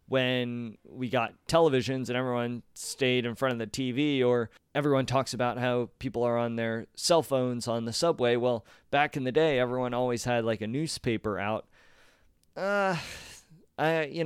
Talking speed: 175 wpm